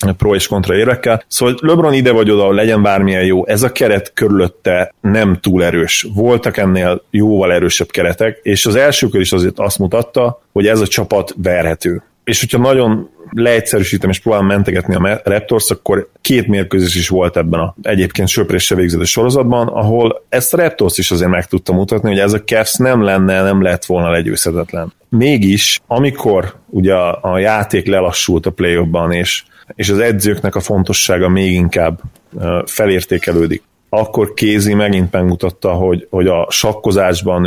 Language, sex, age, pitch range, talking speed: Hungarian, male, 30-49, 90-110 Hz, 160 wpm